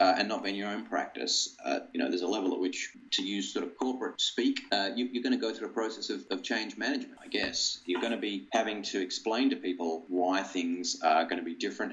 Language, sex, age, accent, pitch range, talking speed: English, male, 30-49, Australian, 95-145 Hz, 260 wpm